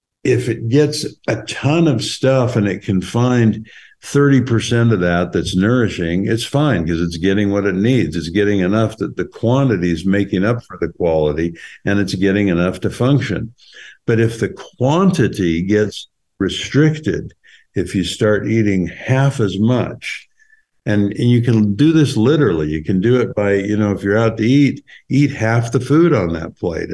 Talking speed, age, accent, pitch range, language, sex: 180 wpm, 60-79, American, 95-125 Hz, English, male